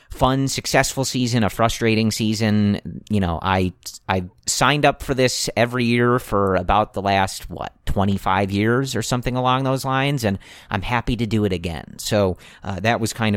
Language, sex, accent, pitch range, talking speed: English, male, American, 95-115 Hz, 180 wpm